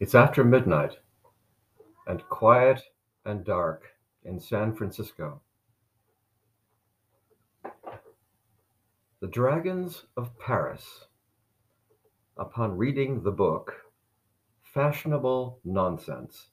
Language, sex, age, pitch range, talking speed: English, male, 60-79, 105-125 Hz, 75 wpm